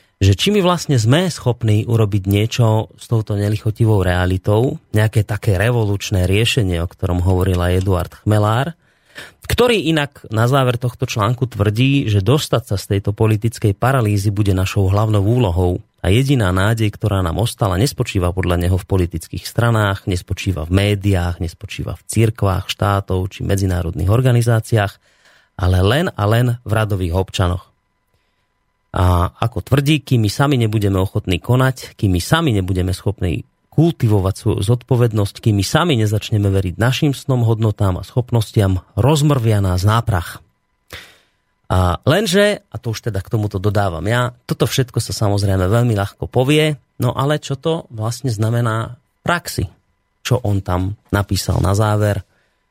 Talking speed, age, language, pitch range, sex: 145 wpm, 30-49, Slovak, 95-120 Hz, male